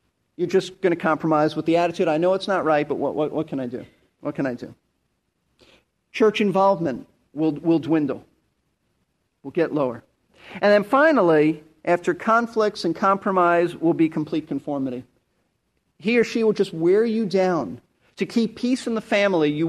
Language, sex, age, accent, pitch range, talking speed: English, male, 40-59, American, 165-210 Hz, 175 wpm